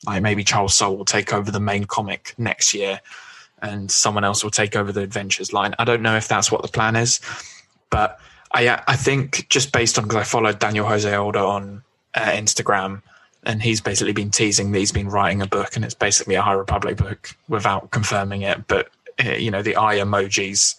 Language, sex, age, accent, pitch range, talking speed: English, male, 20-39, British, 100-110 Hz, 210 wpm